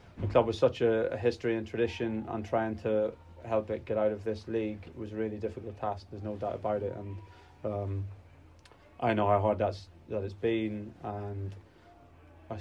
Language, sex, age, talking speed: English, male, 20-39, 190 wpm